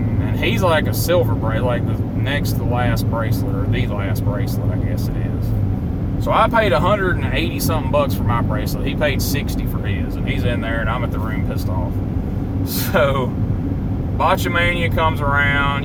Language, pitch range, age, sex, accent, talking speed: English, 95-125 Hz, 30-49, male, American, 190 wpm